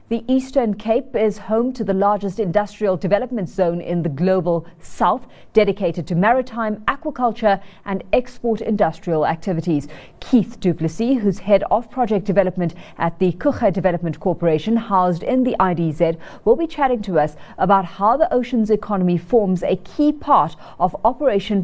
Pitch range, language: 175-235 Hz, English